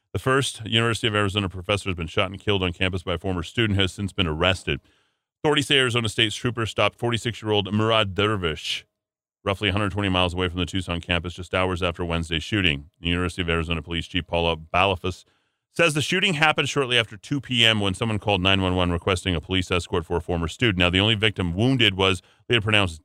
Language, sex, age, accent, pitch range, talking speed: English, male, 30-49, American, 90-115 Hz, 205 wpm